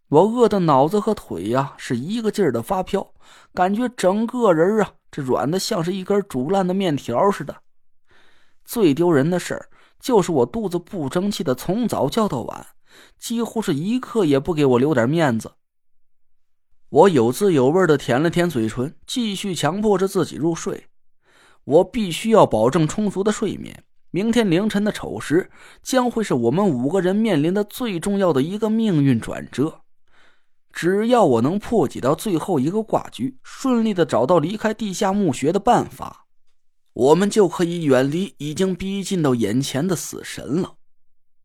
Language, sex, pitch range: Chinese, male, 155-210 Hz